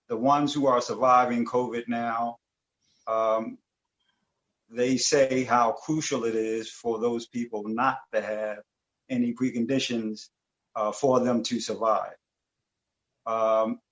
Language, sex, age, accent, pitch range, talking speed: English, male, 50-69, American, 110-140 Hz, 120 wpm